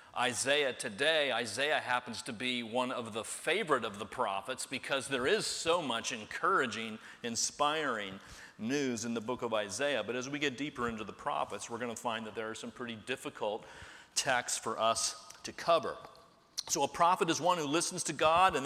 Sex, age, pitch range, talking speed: male, 40-59, 130-170 Hz, 190 wpm